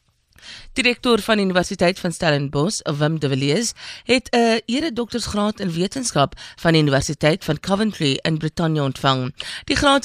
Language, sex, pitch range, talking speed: English, female, 150-210 Hz, 145 wpm